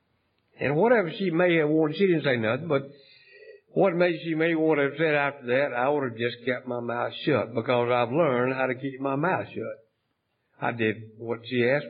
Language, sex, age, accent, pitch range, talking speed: English, male, 60-79, American, 120-160 Hz, 210 wpm